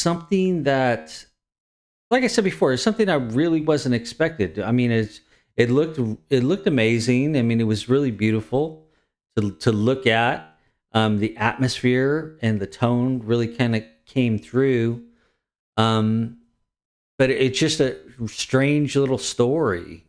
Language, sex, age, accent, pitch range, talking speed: English, male, 40-59, American, 105-125 Hz, 145 wpm